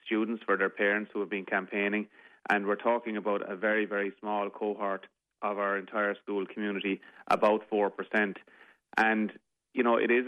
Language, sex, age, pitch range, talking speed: English, male, 30-49, 100-110 Hz, 170 wpm